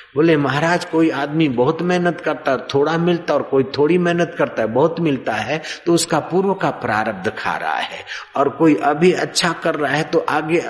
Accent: native